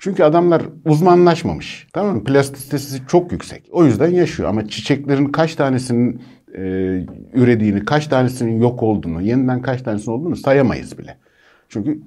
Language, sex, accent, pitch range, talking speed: Turkish, male, native, 100-140 Hz, 140 wpm